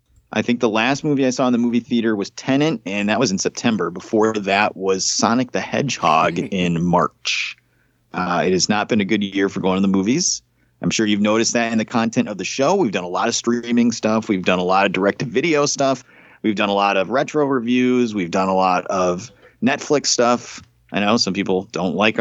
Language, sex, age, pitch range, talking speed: English, male, 30-49, 105-130 Hz, 225 wpm